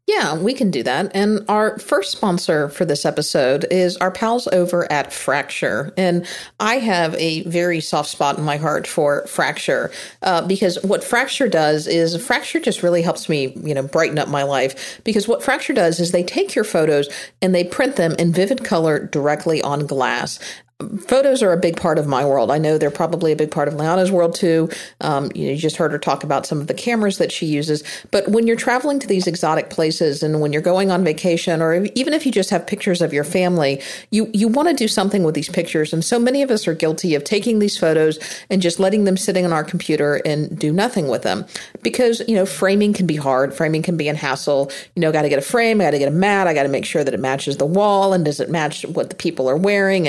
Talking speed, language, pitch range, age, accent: 240 wpm, English, 150-200 Hz, 50-69, American